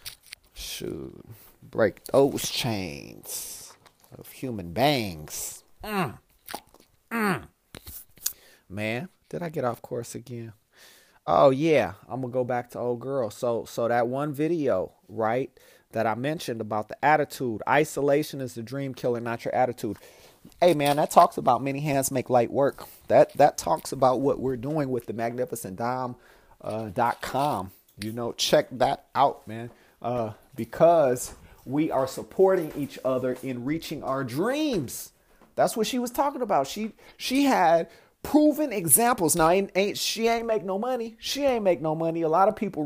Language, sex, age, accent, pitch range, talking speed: English, male, 30-49, American, 125-200 Hz, 155 wpm